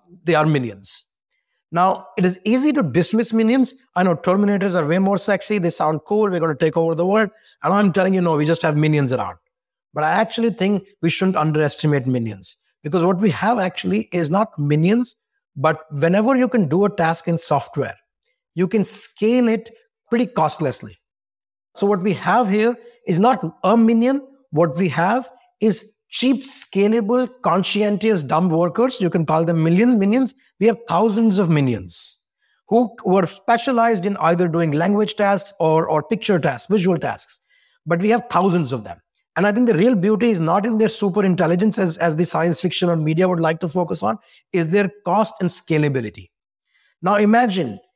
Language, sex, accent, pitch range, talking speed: English, male, Indian, 170-225 Hz, 185 wpm